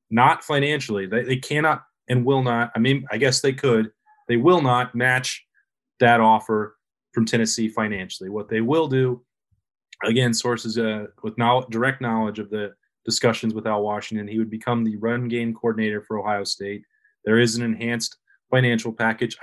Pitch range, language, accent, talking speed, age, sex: 110-125 Hz, English, American, 175 wpm, 30-49, male